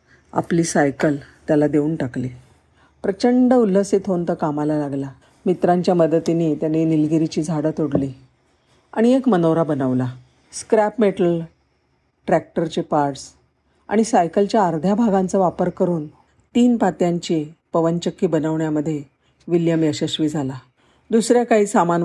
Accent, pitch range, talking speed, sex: native, 150-195 Hz, 115 wpm, female